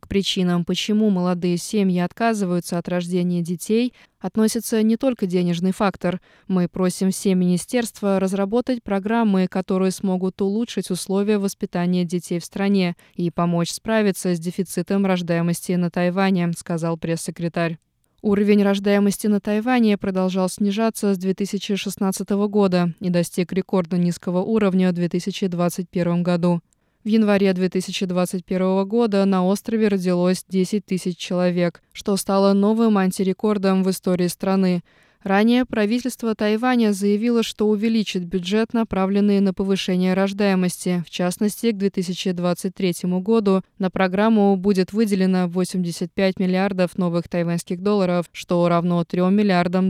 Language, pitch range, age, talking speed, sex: Russian, 180-205 Hz, 20-39, 120 wpm, female